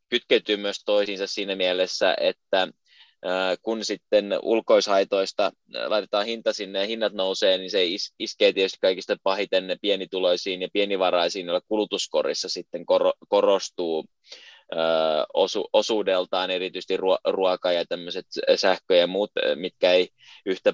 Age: 20-39